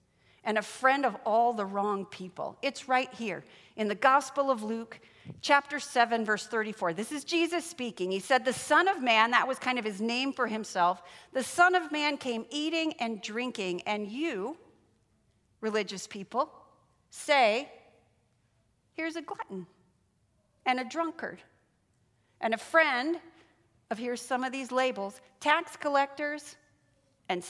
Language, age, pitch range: English, 40-59, 220-300 Hz